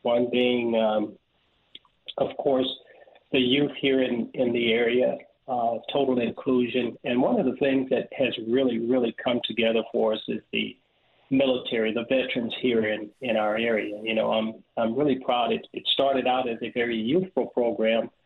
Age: 40-59